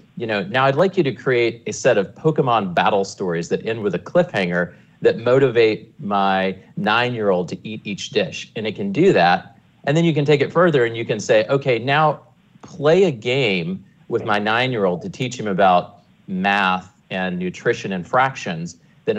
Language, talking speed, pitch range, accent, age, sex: English, 190 wpm, 100-145 Hz, American, 40-59, male